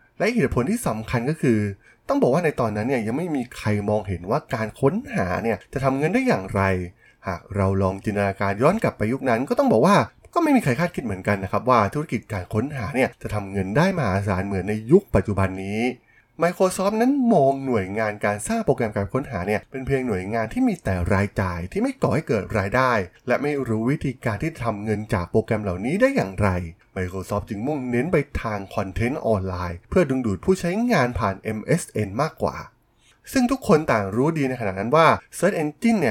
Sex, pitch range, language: male, 100-155 Hz, Thai